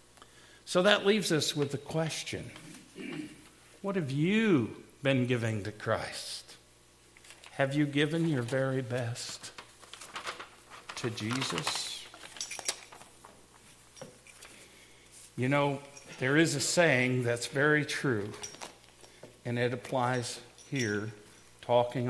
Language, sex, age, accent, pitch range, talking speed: English, male, 50-69, American, 120-155 Hz, 100 wpm